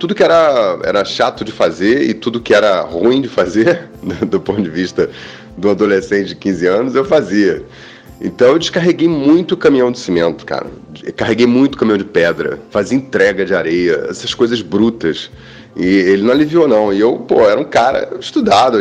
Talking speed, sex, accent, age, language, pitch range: 185 wpm, male, Brazilian, 30-49, Portuguese, 95-145 Hz